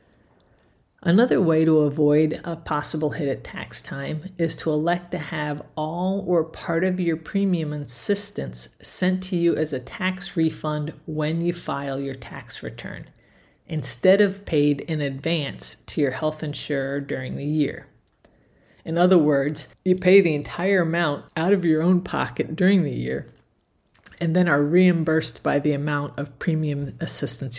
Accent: American